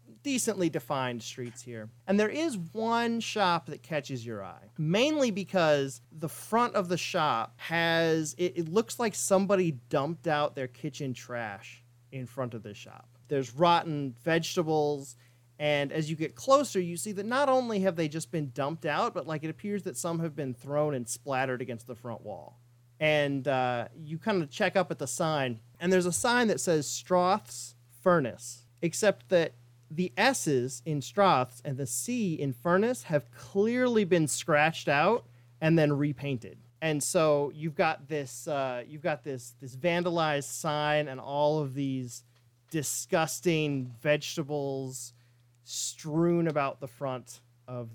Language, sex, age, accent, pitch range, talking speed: English, male, 30-49, American, 125-175 Hz, 165 wpm